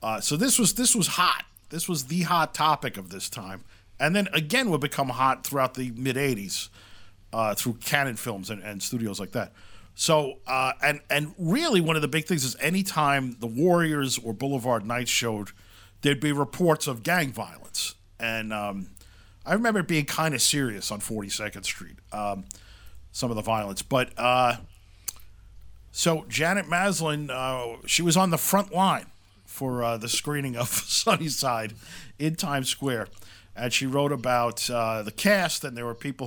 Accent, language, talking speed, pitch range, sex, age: American, English, 175 wpm, 105-150 Hz, male, 50-69